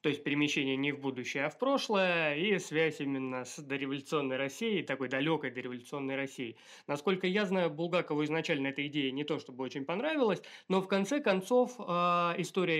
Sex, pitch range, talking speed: male, 135-175 Hz, 170 wpm